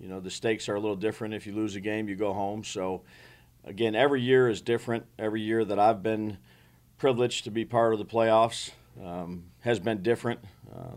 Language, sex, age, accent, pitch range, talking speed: English, male, 50-69, American, 100-115 Hz, 215 wpm